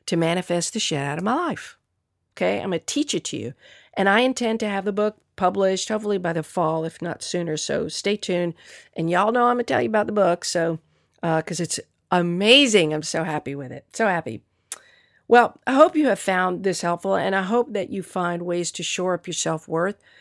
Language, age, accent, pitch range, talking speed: English, 50-69, American, 170-225 Hz, 230 wpm